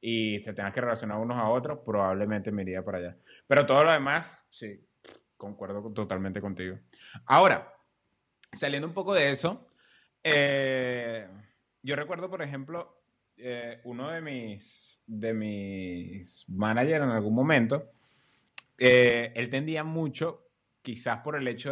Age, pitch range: 20-39, 110-140 Hz